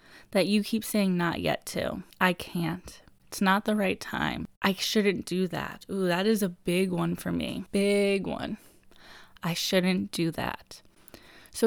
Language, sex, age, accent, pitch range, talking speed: English, female, 20-39, American, 180-225 Hz, 170 wpm